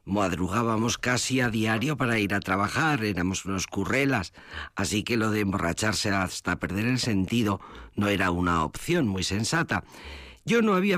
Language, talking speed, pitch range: Spanish, 160 wpm, 95-130 Hz